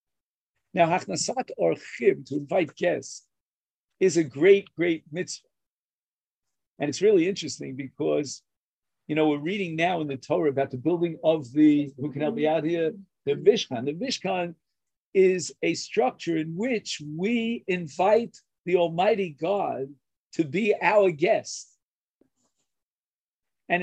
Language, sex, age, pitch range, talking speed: English, male, 50-69, 150-205 Hz, 140 wpm